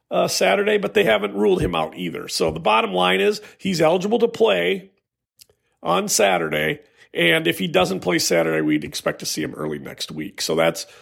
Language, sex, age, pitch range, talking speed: English, male, 40-59, 145-195 Hz, 195 wpm